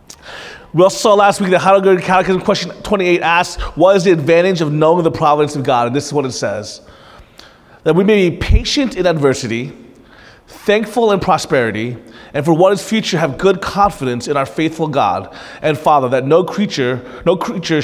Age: 30-49